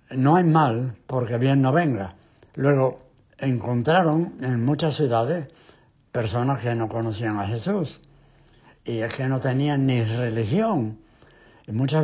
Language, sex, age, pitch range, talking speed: English, male, 60-79, 115-155 Hz, 135 wpm